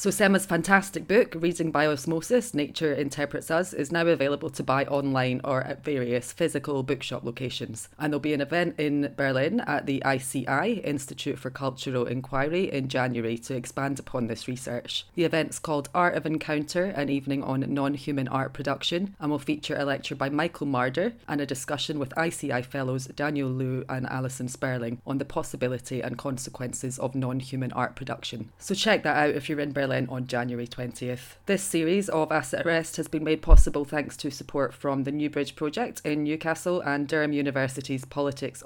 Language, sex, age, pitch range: English, female, 30-49, 130-155 Hz